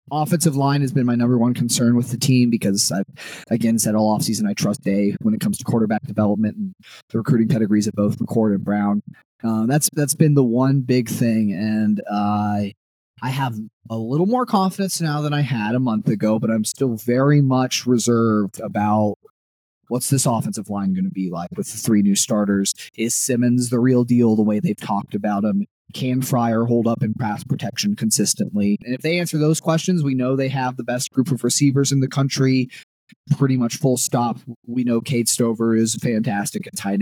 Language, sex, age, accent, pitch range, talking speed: English, male, 30-49, American, 110-140 Hz, 205 wpm